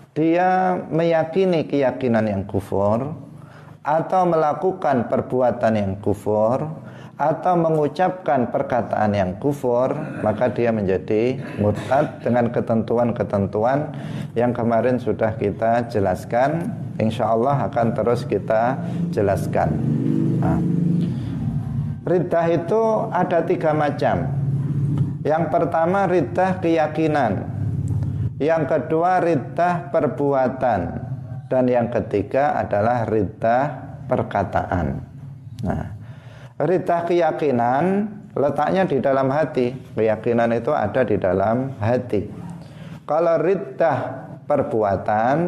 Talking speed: 90 wpm